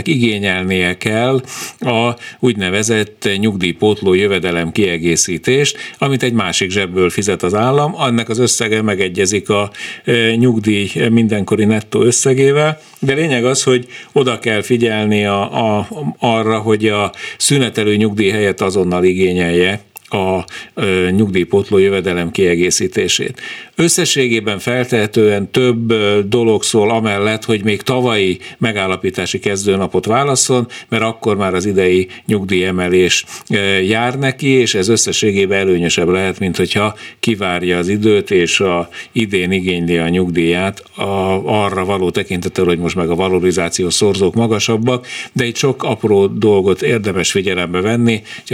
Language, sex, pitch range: Hungarian, male, 90-115 Hz